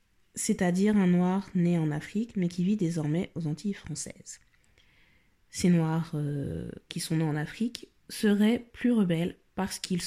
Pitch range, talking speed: 165-200 Hz, 155 wpm